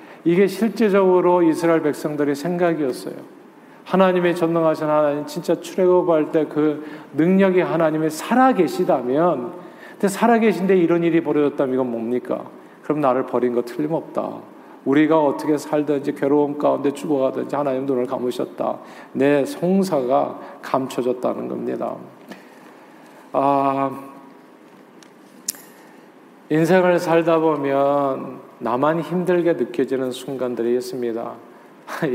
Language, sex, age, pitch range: Korean, male, 40-59, 135-170 Hz